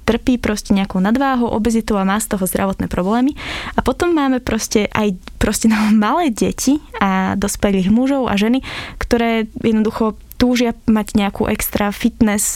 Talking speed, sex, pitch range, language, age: 150 wpm, female, 210-235 Hz, Slovak, 20-39